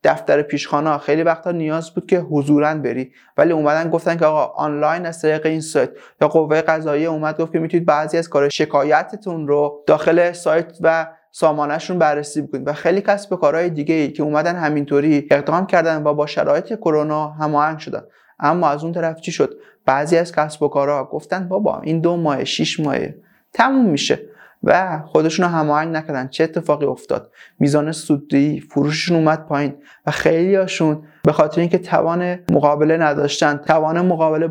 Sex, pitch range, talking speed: male, 145-165 Hz, 165 wpm